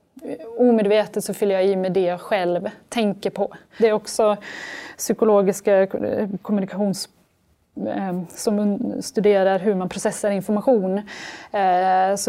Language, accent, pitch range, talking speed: Swedish, native, 190-220 Hz, 110 wpm